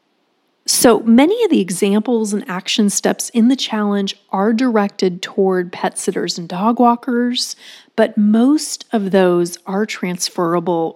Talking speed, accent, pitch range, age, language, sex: 135 wpm, American, 180-235 Hz, 30-49, English, female